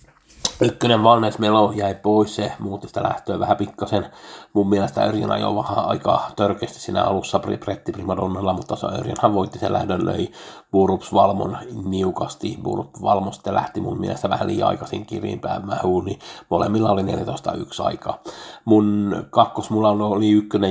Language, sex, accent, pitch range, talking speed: Finnish, male, native, 95-110 Hz, 155 wpm